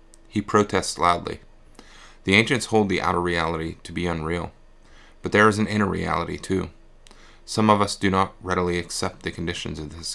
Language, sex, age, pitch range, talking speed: English, male, 30-49, 80-95 Hz, 175 wpm